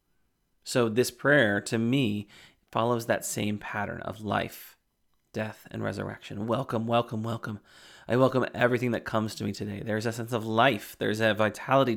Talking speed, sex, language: 165 wpm, male, English